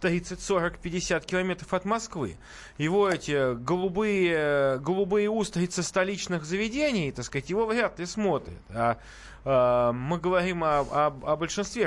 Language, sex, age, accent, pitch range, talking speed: Russian, male, 20-39, native, 150-210 Hz, 125 wpm